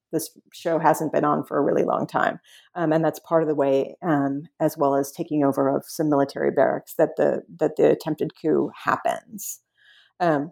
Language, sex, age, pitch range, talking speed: English, female, 40-59, 155-180 Hz, 200 wpm